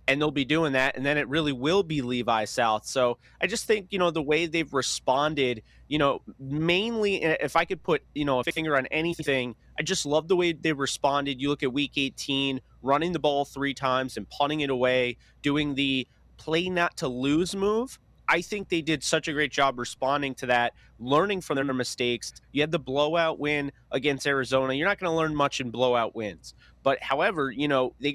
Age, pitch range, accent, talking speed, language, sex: 30-49, 130-160 Hz, American, 215 wpm, English, male